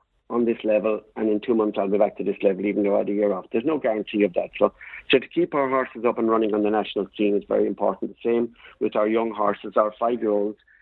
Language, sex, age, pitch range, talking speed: English, male, 60-79, 105-120 Hz, 270 wpm